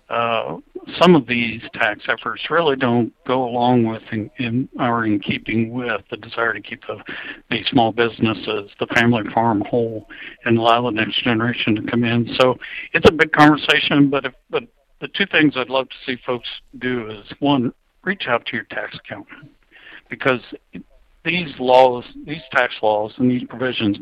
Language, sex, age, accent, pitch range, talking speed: English, male, 60-79, American, 120-140 Hz, 175 wpm